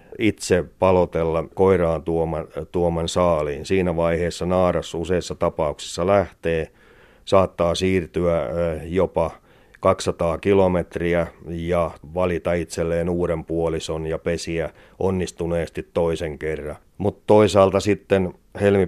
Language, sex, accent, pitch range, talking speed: Finnish, male, native, 85-95 Hz, 90 wpm